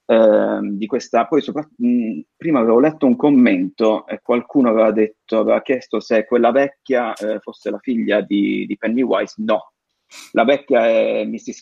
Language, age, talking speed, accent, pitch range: Italian, 30-49, 160 wpm, native, 105-140 Hz